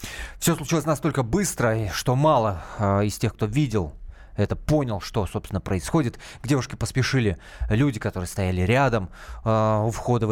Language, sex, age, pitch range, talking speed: Russian, male, 20-39, 95-135 Hz, 155 wpm